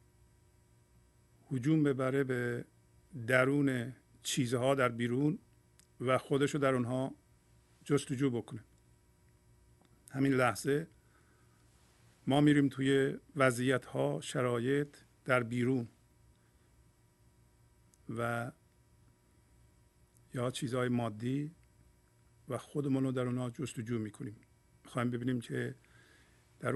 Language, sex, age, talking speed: English, male, 50-69, 85 wpm